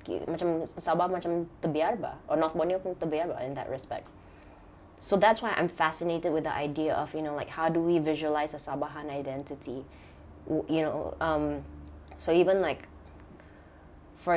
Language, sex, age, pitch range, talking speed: Malay, female, 20-39, 145-180 Hz, 165 wpm